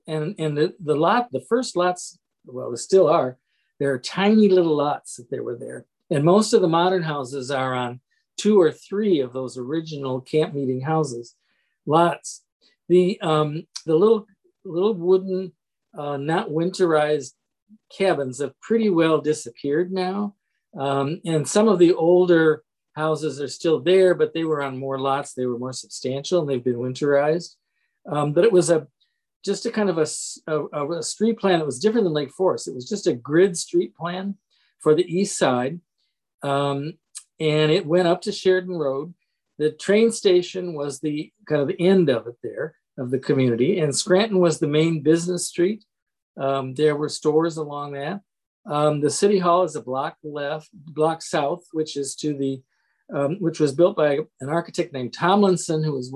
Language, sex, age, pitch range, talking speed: English, male, 50-69, 145-185 Hz, 180 wpm